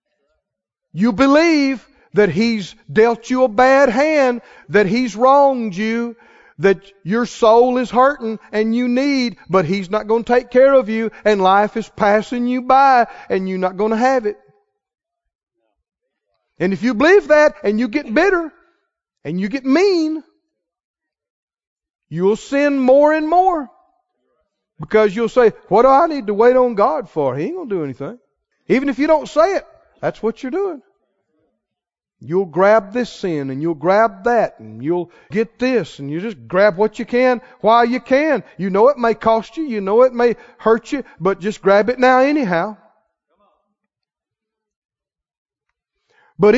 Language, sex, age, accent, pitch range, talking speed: English, male, 40-59, American, 195-265 Hz, 170 wpm